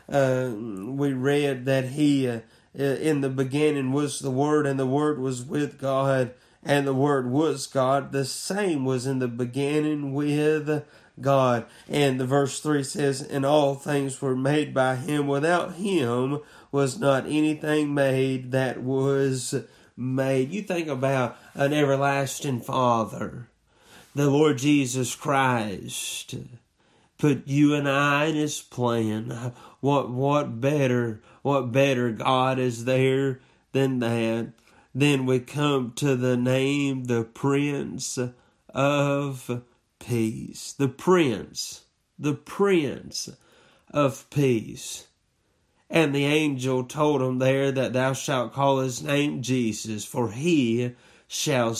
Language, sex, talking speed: English, male, 125 wpm